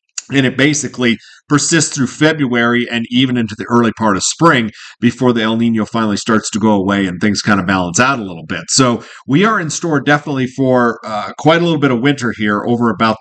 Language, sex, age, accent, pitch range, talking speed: English, male, 40-59, American, 110-140 Hz, 225 wpm